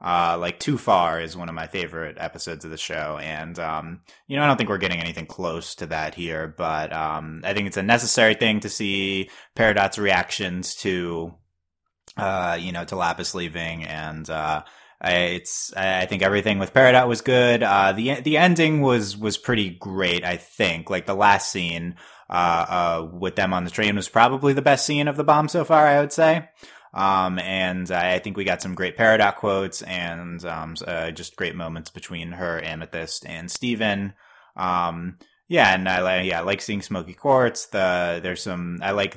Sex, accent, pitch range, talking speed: male, American, 85-115 Hz, 195 wpm